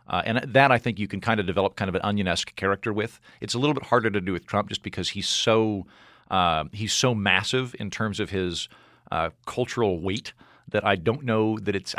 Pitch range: 90-120 Hz